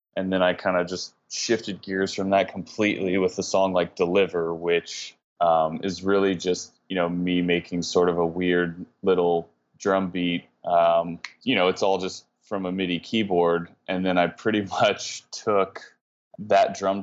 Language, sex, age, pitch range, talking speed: English, male, 20-39, 85-95 Hz, 175 wpm